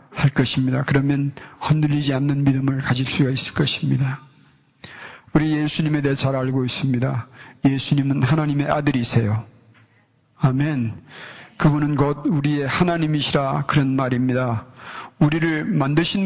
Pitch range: 135-160 Hz